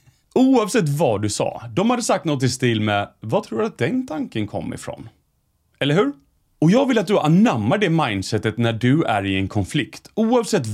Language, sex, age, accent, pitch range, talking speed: Swedish, male, 30-49, native, 110-170 Hz, 200 wpm